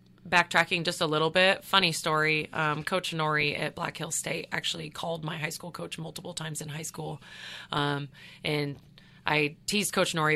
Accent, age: American, 20-39